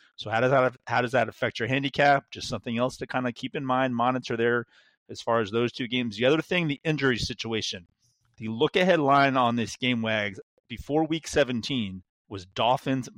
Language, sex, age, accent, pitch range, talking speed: English, male, 30-49, American, 105-130 Hz, 205 wpm